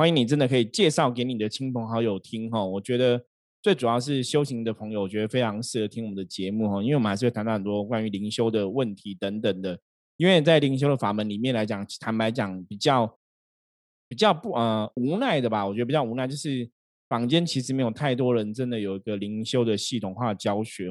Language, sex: Chinese, male